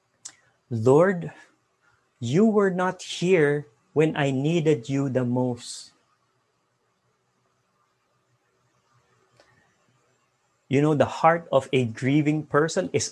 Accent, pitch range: Filipino, 125-165 Hz